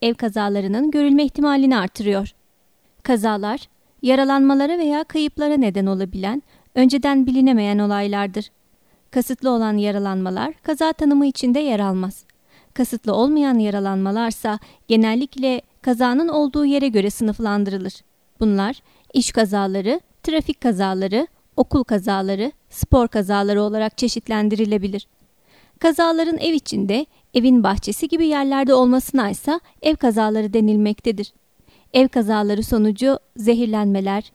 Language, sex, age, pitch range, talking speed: Turkish, female, 30-49, 210-270 Hz, 100 wpm